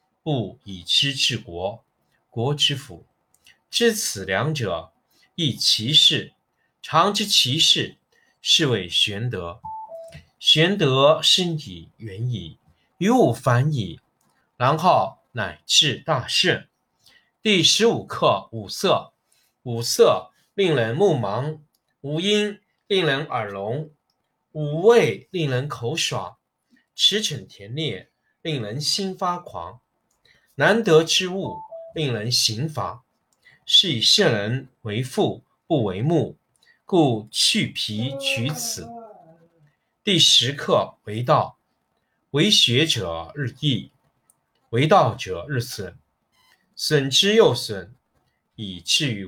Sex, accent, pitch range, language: male, native, 115-160 Hz, Chinese